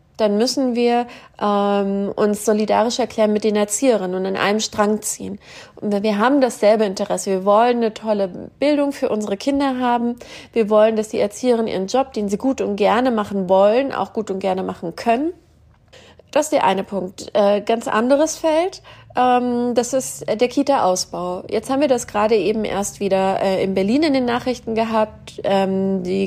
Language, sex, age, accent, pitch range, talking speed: German, female, 30-49, German, 205-250 Hz, 180 wpm